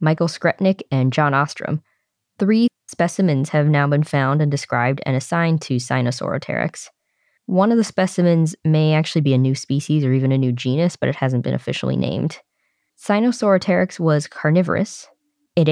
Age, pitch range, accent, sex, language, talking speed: 20-39, 140-175 Hz, American, female, English, 160 wpm